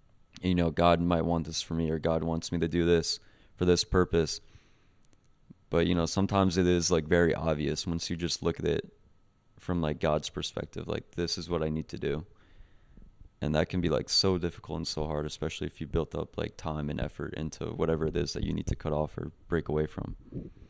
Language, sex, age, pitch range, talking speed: English, male, 20-39, 80-95 Hz, 225 wpm